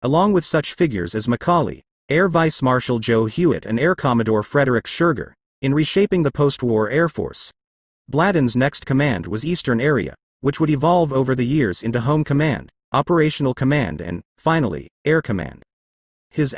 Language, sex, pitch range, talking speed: English, male, 115-160 Hz, 160 wpm